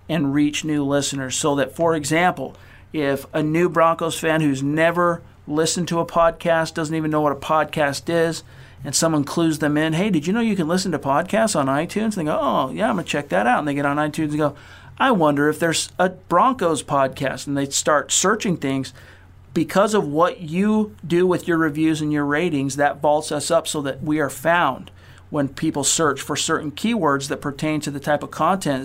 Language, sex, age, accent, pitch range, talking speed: English, male, 50-69, American, 140-165 Hz, 215 wpm